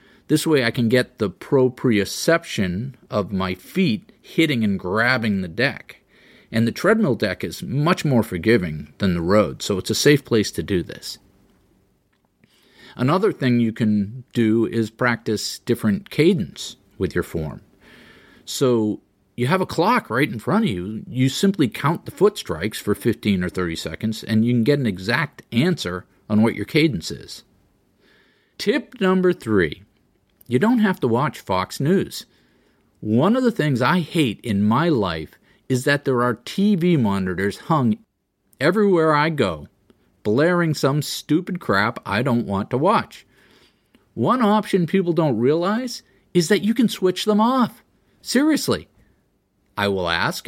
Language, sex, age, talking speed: English, male, 50-69, 160 wpm